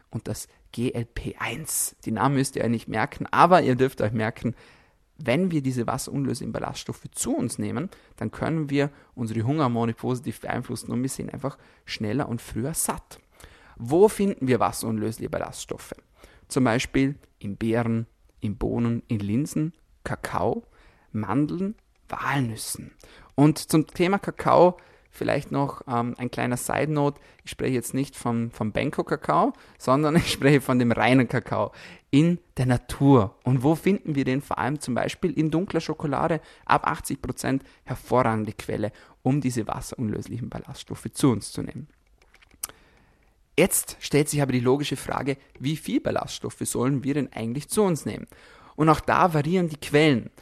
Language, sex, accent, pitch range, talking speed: German, male, German, 115-150 Hz, 155 wpm